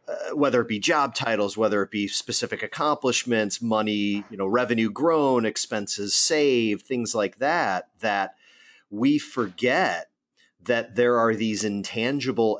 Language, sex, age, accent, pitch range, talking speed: English, male, 40-59, American, 110-145 Hz, 140 wpm